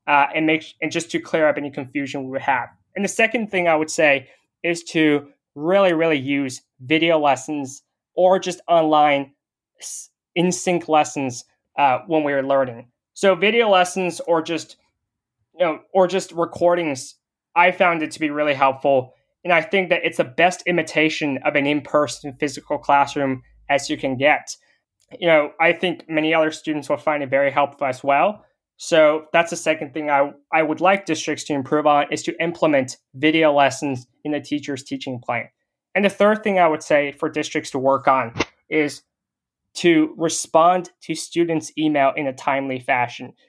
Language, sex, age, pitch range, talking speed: English, male, 20-39, 140-170 Hz, 180 wpm